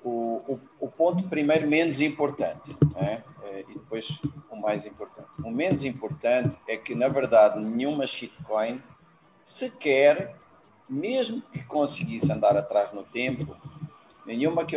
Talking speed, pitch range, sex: 130 wpm, 120-155 Hz, male